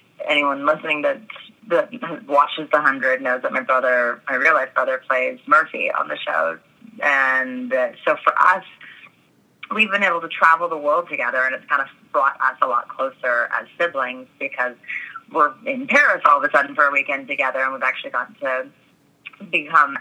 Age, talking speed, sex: 20-39, 180 wpm, female